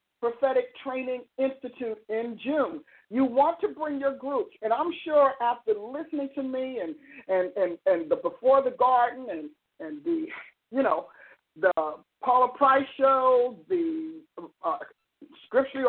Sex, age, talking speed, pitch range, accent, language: male, 50-69, 145 wpm, 230-295 Hz, American, English